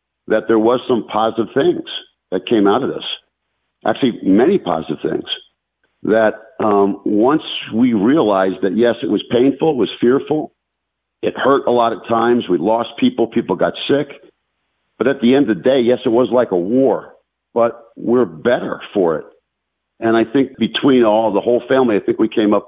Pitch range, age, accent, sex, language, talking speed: 95-120 Hz, 50-69, American, male, English, 190 wpm